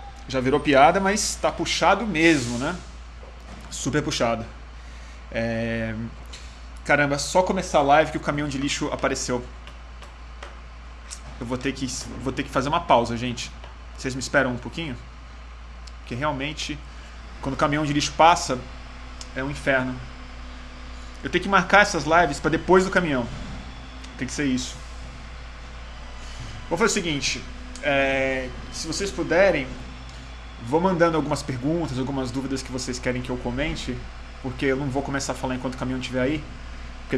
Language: Portuguese